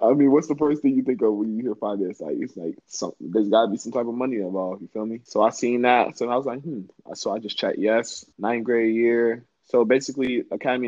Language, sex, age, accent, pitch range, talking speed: English, male, 20-39, American, 100-120 Hz, 270 wpm